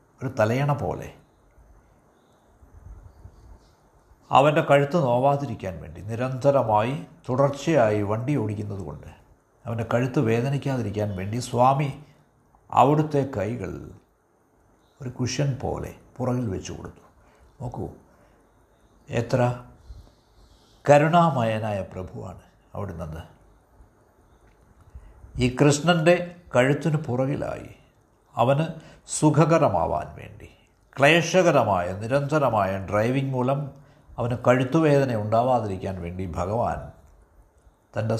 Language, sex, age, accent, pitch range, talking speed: Malayalam, male, 60-79, native, 95-140 Hz, 70 wpm